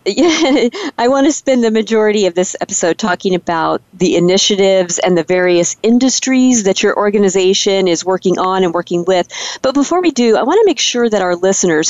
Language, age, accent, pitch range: English, 50-69, American, 185-230 Hz